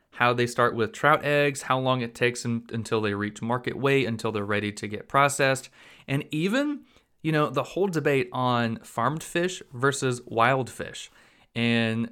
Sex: male